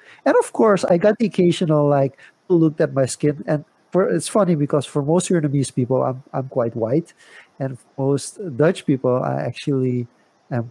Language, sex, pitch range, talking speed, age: English, male, 140-175 Hz, 185 wpm, 50-69